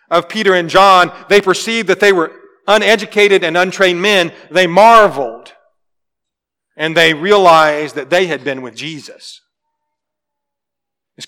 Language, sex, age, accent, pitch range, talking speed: English, male, 40-59, American, 160-215 Hz, 135 wpm